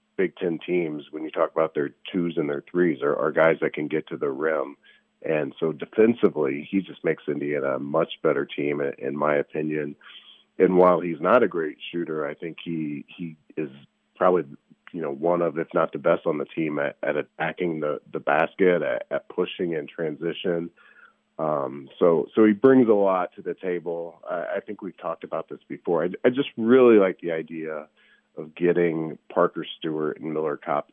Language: English